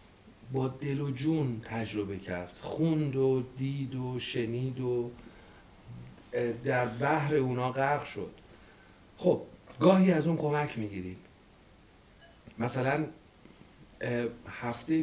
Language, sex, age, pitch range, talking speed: Persian, male, 50-69, 110-140 Hz, 95 wpm